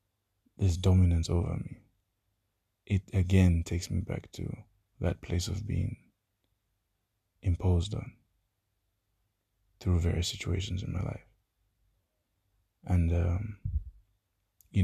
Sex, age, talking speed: male, 20-39, 100 wpm